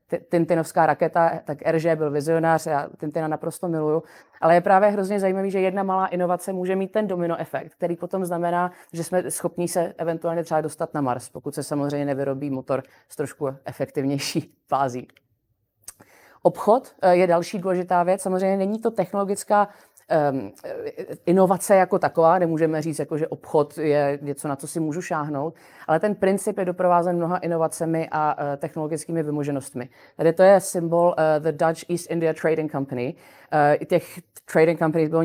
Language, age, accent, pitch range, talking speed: Czech, 30-49, native, 155-195 Hz, 165 wpm